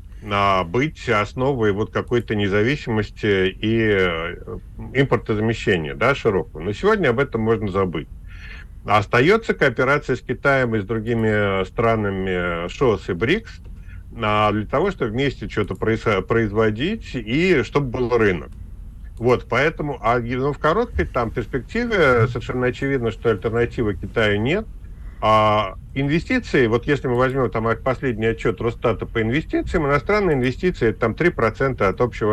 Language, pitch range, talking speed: Russian, 95-125 Hz, 130 wpm